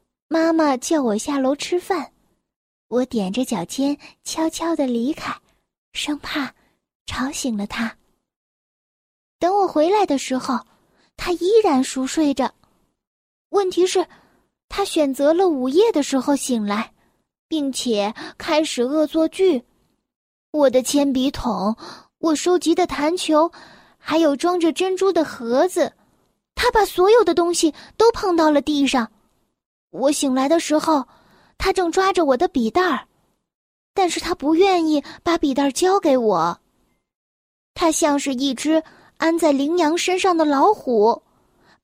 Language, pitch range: Chinese, 275-360 Hz